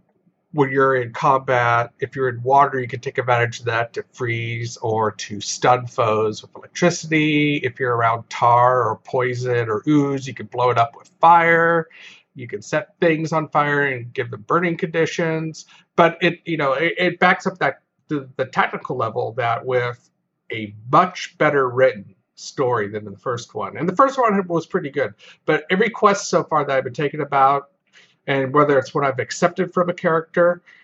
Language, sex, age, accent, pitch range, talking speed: English, male, 50-69, American, 130-175 Hz, 190 wpm